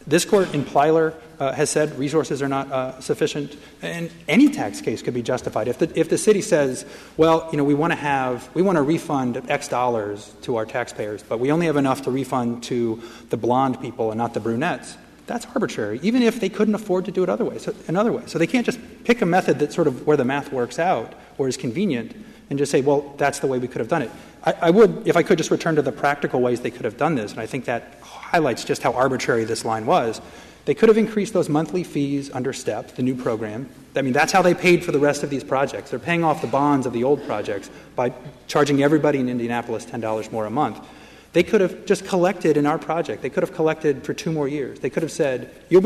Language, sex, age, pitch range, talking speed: English, male, 30-49, 125-170 Hz, 250 wpm